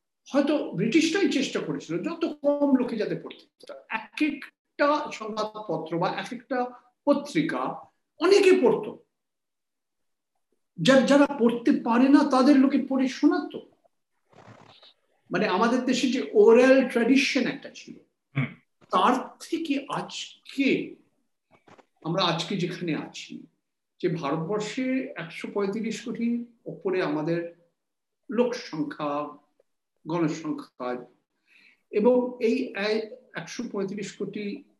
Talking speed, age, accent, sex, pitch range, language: 80 wpm, 50-69, native, male, 185-265 Hz, Bengali